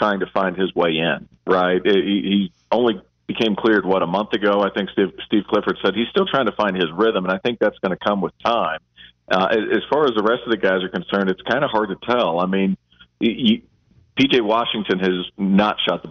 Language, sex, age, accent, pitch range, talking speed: English, male, 40-59, American, 95-110 Hz, 230 wpm